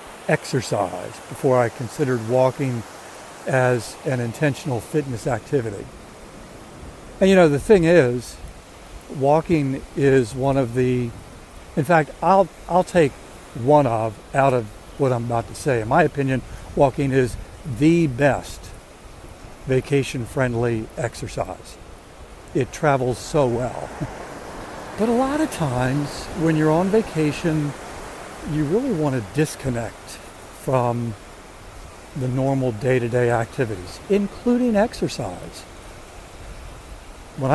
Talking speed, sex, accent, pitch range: 115 wpm, male, American, 115-150 Hz